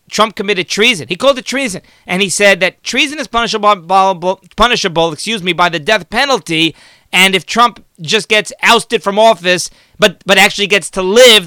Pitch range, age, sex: 170-220 Hz, 30-49, male